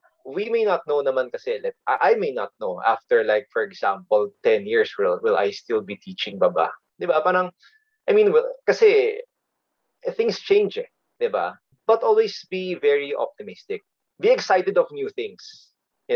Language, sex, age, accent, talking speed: English, male, 20-39, Filipino, 160 wpm